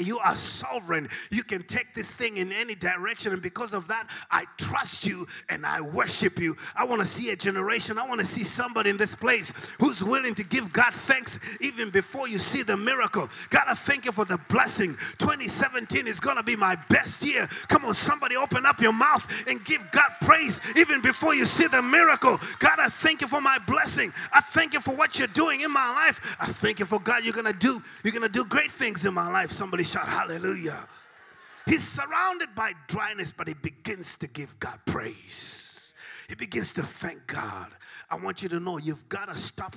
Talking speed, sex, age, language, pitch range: 210 wpm, male, 30-49, English, 155-245 Hz